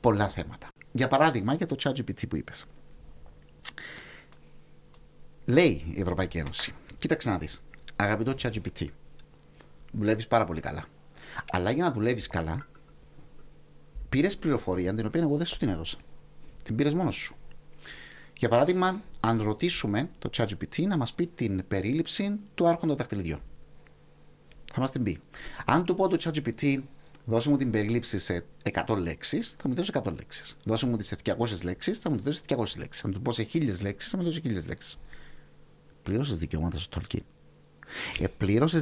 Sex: male